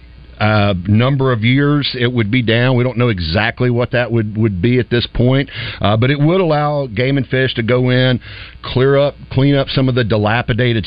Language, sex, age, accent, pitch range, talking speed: English, male, 50-69, American, 105-125 Hz, 215 wpm